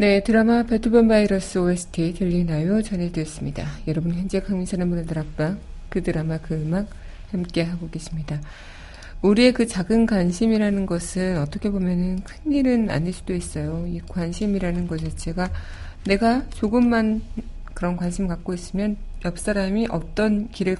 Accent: native